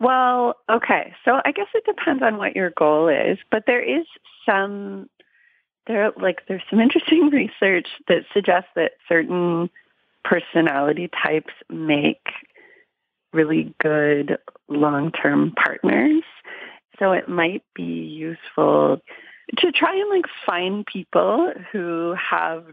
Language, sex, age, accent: English, female, 30-49, American